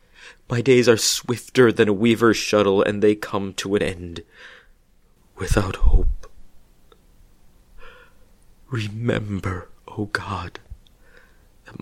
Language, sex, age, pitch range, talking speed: English, male, 30-49, 85-105 Hz, 100 wpm